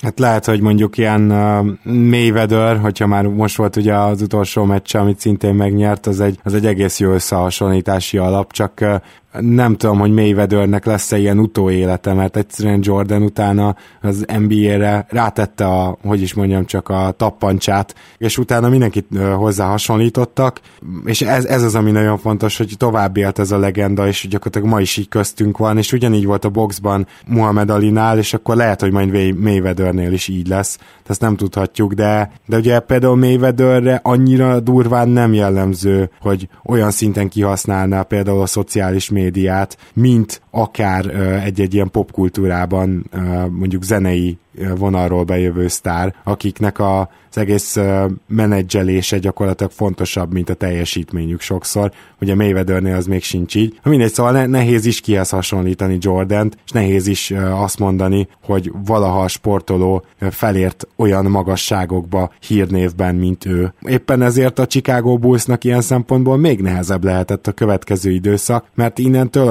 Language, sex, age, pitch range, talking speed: Hungarian, male, 20-39, 95-110 Hz, 150 wpm